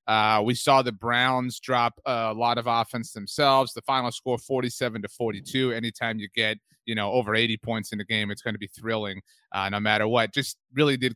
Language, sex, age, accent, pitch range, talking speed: English, male, 30-49, American, 115-140 Hz, 215 wpm